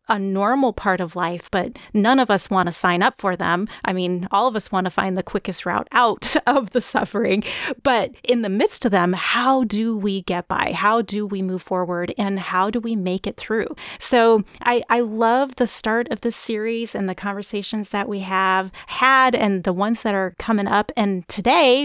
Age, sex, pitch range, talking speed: 30-49, female, 185-240 Hz, 215 wpm